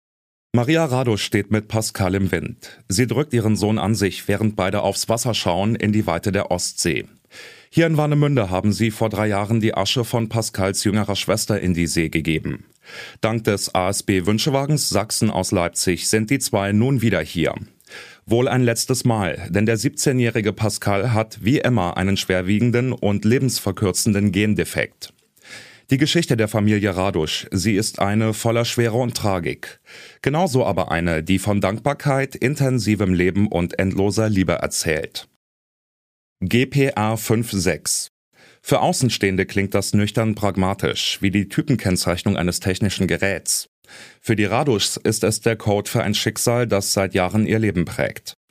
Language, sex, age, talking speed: German, male, 30-49, 150 wpm